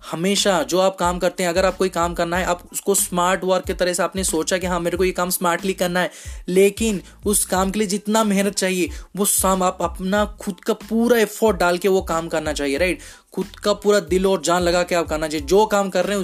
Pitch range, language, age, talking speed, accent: 170-195 Hz, Hindi, 20-39, 255 wpm, native